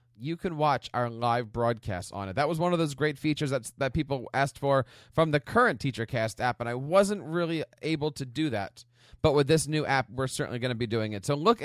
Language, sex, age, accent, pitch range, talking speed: English, male, 30-49, American, 120-170 Hz, 240 wpm